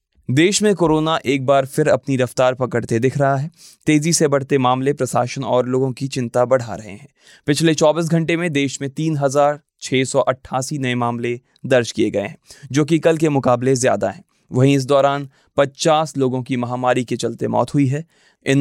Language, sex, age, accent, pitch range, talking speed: Hindi, male, 20-39, native, 120-140 Hz, 185 wpm